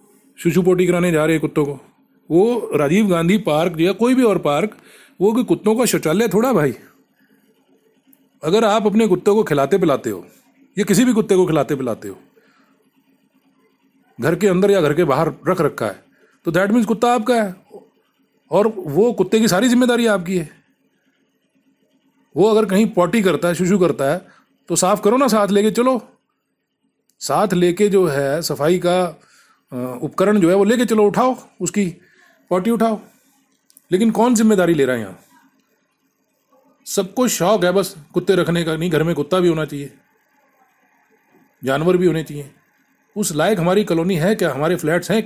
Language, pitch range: Hindi, 170-225 Hz